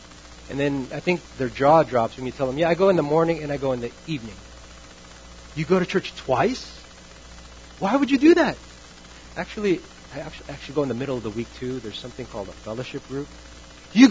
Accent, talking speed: American, 220 wpm